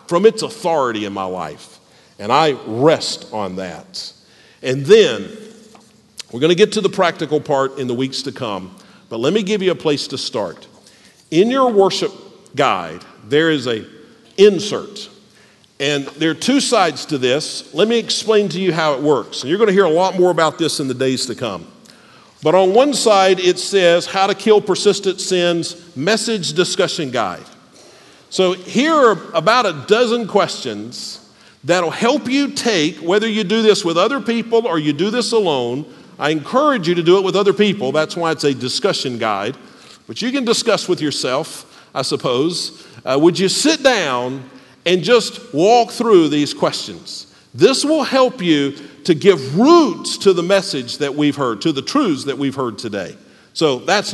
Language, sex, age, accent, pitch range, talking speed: English, male, 50-69, American, 160-230 Hz, 180 wpm